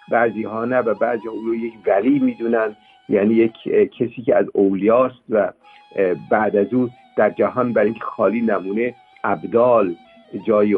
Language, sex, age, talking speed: Persian, male, 50-69, 150 wpm